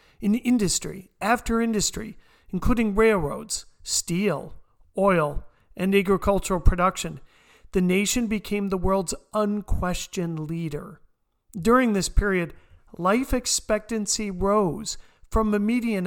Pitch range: 175-215 Hz